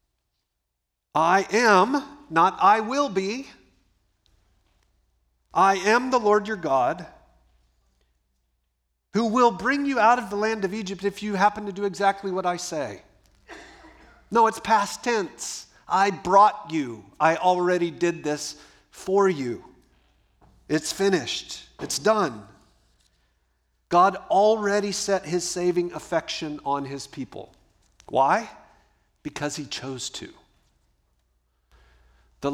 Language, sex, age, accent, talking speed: English, male, 50-69, American, 115 wpm